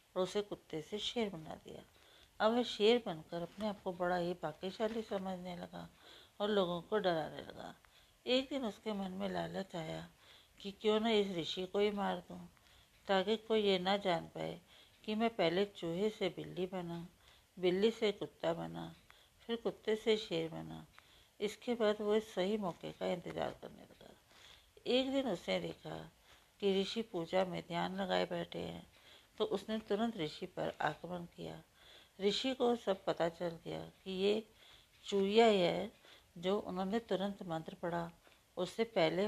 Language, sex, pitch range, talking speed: Hindi, female, 165-210 Hz, 165 wpm